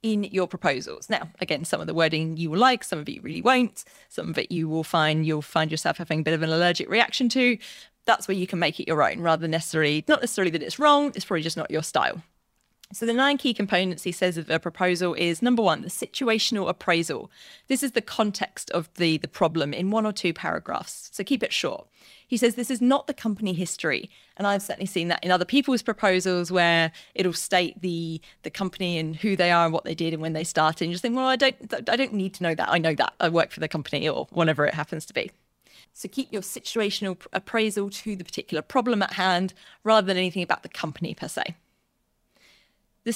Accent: British